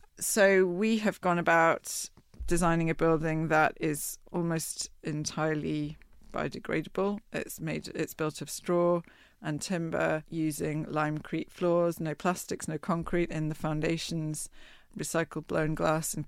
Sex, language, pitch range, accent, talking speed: female, English, 160-190 Hz, British, 135 wpm